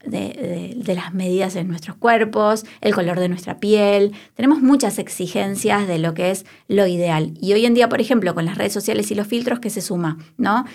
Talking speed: 220 wpm